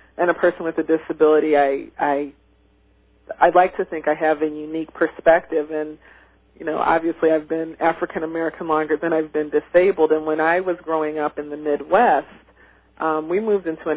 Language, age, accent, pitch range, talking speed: English, 40-59, American, 150-165 Hz, 195 wpm